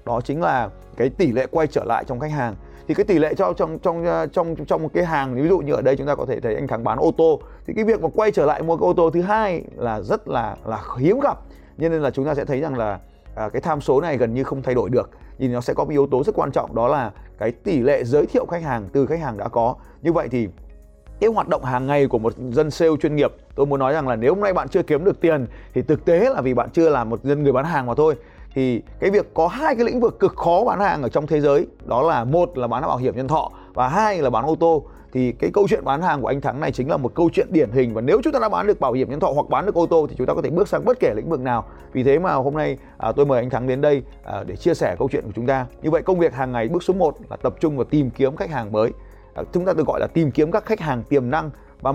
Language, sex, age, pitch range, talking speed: Vietnamese, male, 20-39, 125-170 Hz, 310 wpm